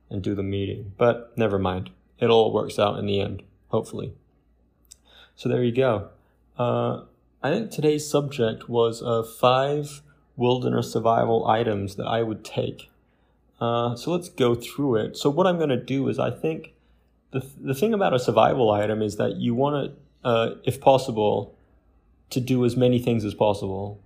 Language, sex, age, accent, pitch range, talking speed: English, male, 20-39, American, 100-130 Hz, 175 wpm